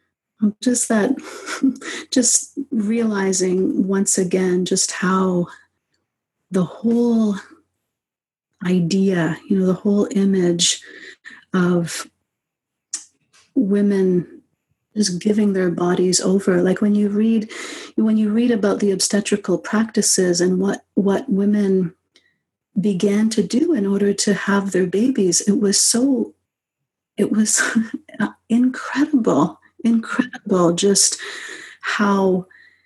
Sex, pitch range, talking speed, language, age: female, 185-230 Hz, 100 wpm, English, 50-69